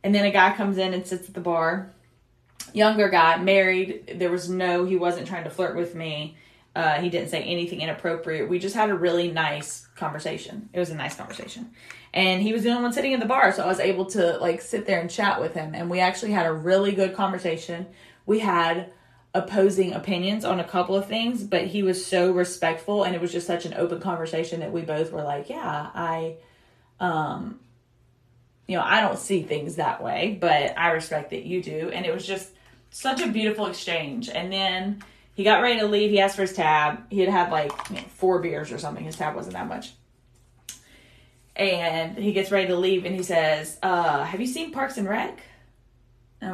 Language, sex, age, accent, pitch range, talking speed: English, female, 20-39, American, 165-195 Hz, 215 wpm